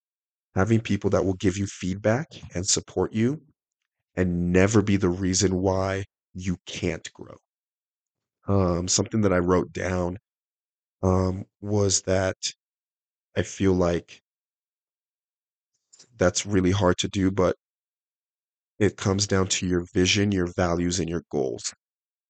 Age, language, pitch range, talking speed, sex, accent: 30-49, English, 90-100 Hz, 130 wpm, male, American